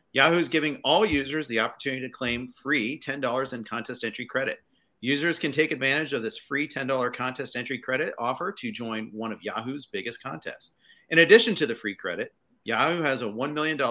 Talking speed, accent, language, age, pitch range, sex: 195 wpm, American, English, 40-59, 125-170 Hz, male